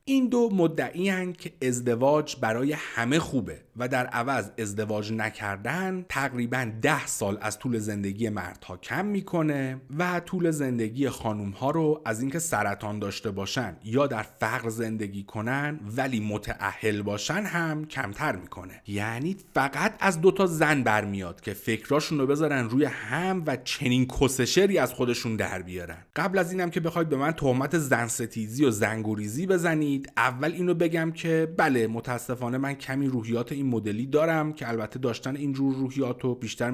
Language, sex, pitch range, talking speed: Persian, male, 110-155 Hz, 145 wpm